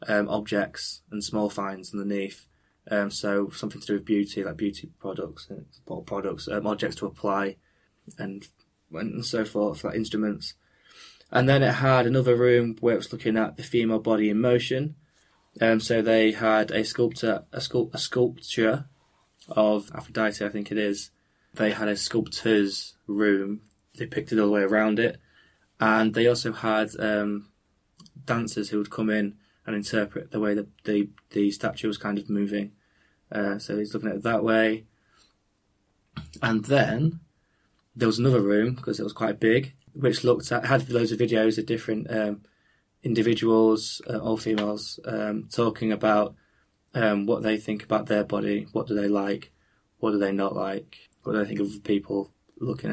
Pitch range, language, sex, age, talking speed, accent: 105-115 Hz, English, male, 20-39, 175 wpm, British